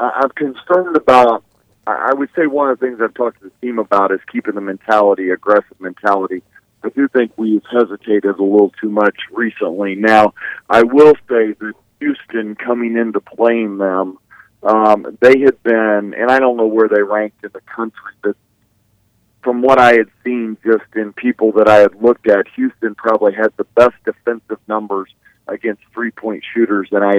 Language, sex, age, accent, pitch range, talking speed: English, male, 50-69, American, 100-120 Hz, 180 wpm